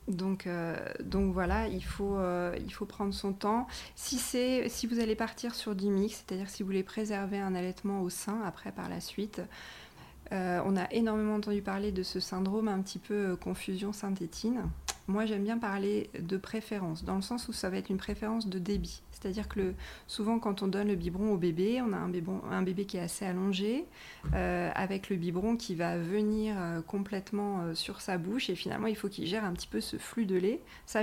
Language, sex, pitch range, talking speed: French, female, 185-215 Hz, 205 wpm